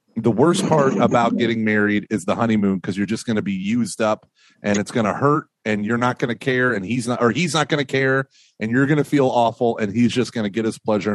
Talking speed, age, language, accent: 275 wpm, 30-49, English, American